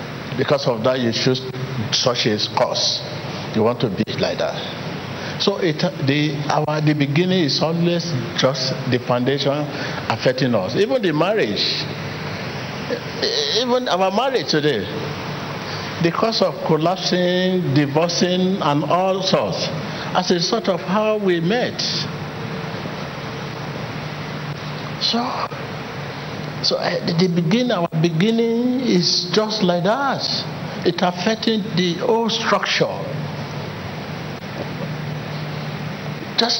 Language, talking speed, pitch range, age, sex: English, 105 wpm, 150-185 Hz, 60-79, male